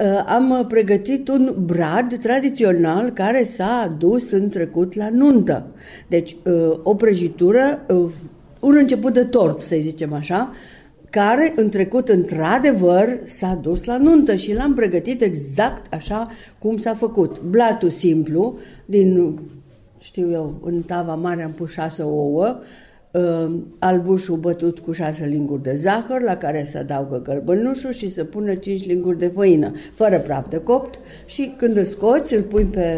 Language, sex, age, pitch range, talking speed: Romanian, female, 50-69, 165-220 Hz, 145 wpm